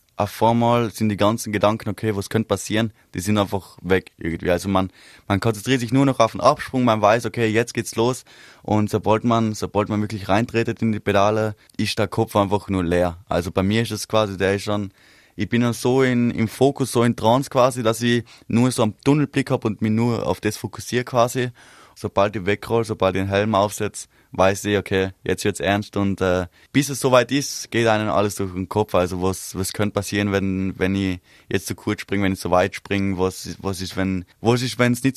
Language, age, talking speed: German, 20-39, 220 wpm